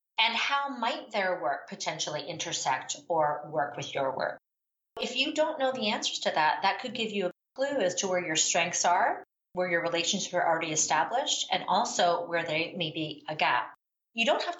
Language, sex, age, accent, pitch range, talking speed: English, female, 40-59, American, 165-225 Hz, 200 wpm